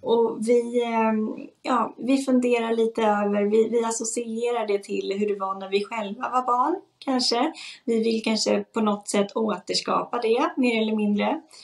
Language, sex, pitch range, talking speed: Swedish, female, 200-245 Hz, 165 wpm